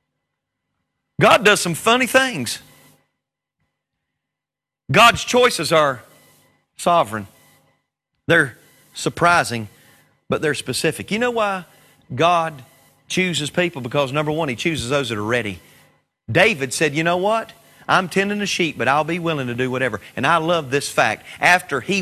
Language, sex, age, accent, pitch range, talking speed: English, male, 40-59, American, 135-170 Hz, 140 wpm